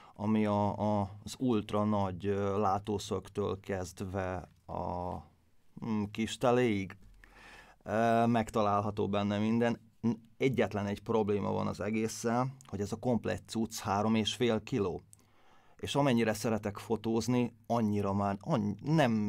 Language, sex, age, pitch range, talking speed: Hungarian, male, 30-49, 105-115 Hz, 105 wpm